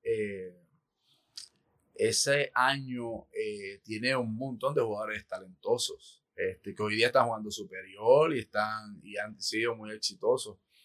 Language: Spanish